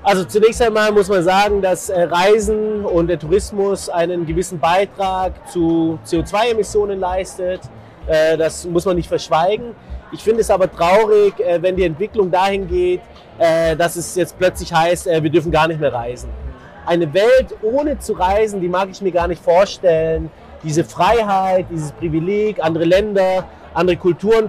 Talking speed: 155 wpm